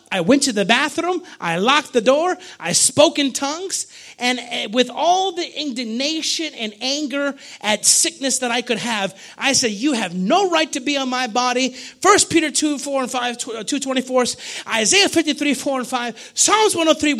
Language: English